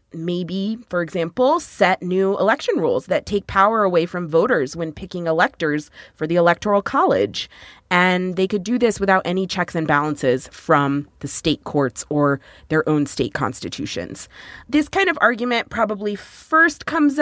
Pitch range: 165-210 Hz